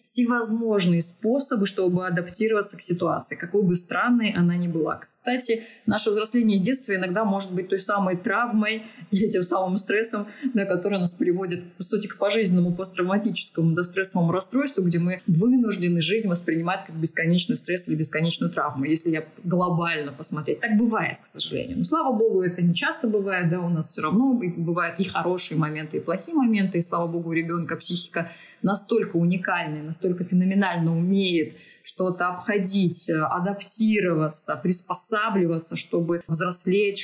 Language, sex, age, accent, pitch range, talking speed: Russian, female, 20-39, native, 170-215 Hz, 150 wpm